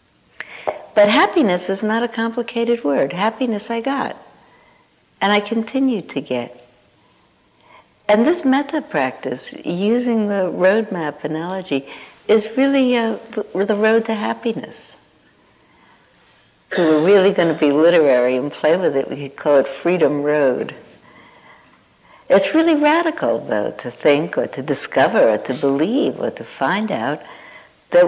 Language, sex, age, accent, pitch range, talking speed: English, female, 60-79, American, 140-220 Hz, 140 wpm